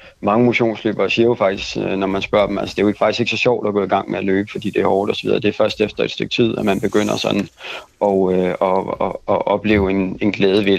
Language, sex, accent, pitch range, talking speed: Danish, male, native, 100-115 Hz, 290 wpm